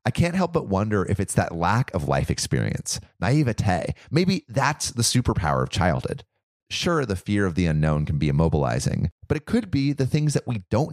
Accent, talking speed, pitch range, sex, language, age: American, 205 wpm, 95-135 Hz, male, English, 30-49